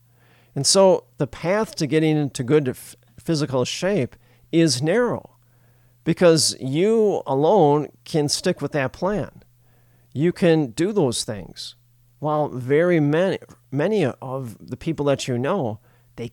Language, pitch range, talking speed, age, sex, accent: English, 120-160 Hz, 130 wpm, 40-59, male, American